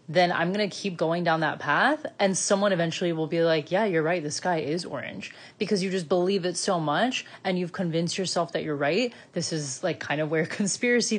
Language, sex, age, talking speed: English, female, 20-39, 230 wpm